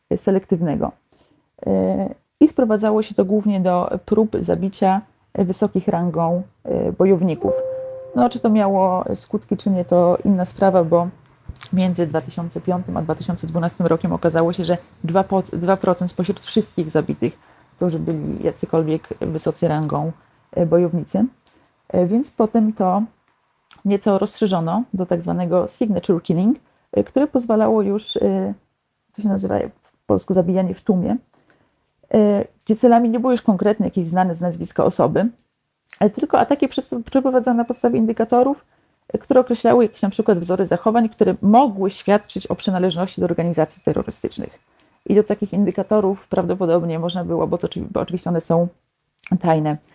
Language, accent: Polish, native